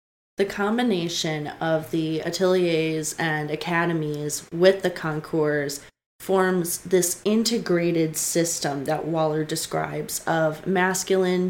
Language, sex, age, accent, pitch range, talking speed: English, female, 20-39, American, 165-195 Hz, 100 wpm